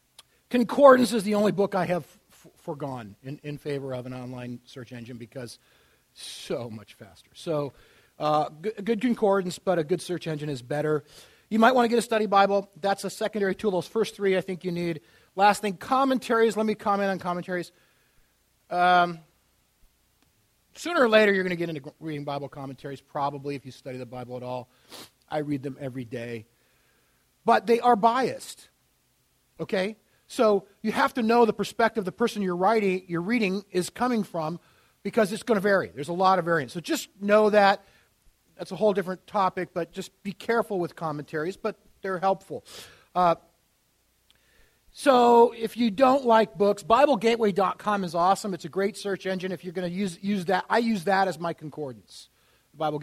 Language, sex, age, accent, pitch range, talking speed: English, male, 40-59, American, 150-215 Hz, 185 wpm